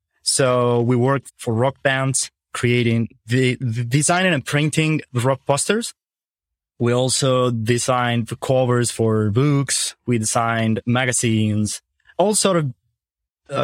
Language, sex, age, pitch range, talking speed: English, male, 20-39, 115-140 Hz, 125 wpm